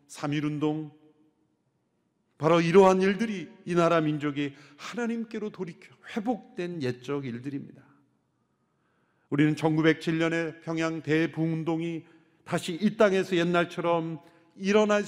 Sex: male